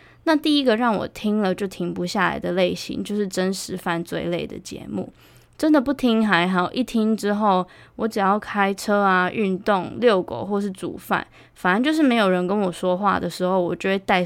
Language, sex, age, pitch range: Chinese, female, 20-39, 185-220 Hz